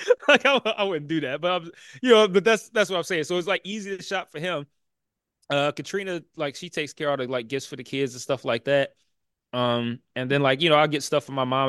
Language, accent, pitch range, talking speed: English, American, 130-170 Hz, 270 wpm